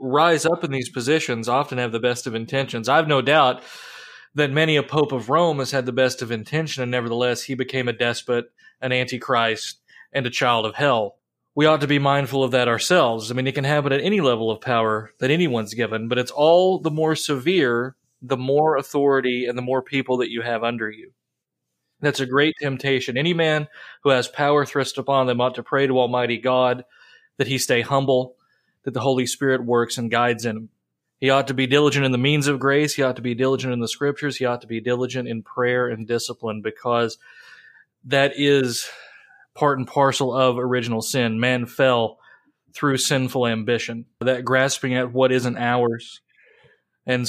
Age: 30-49